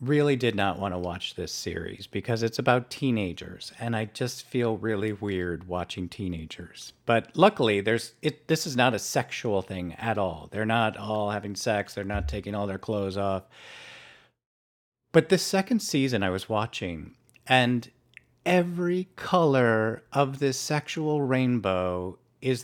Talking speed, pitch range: 155 wpm, 95-125 Hz